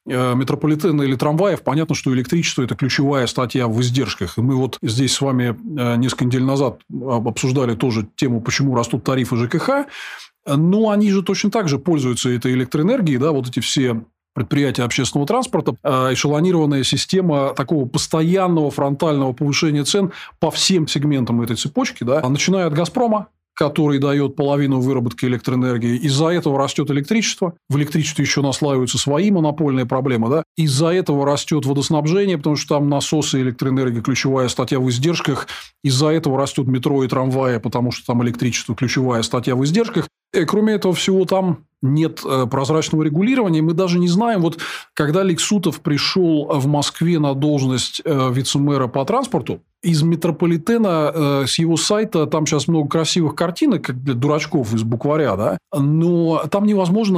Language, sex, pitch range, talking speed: Russian, male, 130-170 Hz, 155 wpm